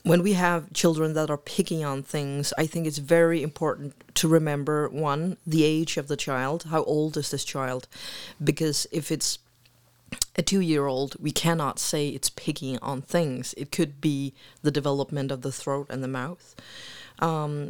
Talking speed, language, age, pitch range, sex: 175 wpm, Danish, 30-49, 140-165 Hz, female